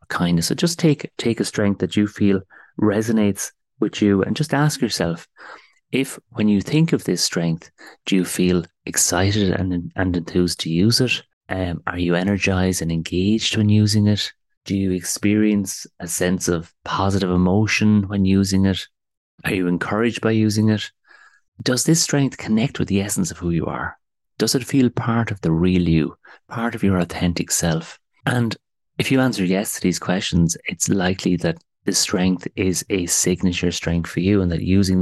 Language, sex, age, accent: English, male, 30-49, Irish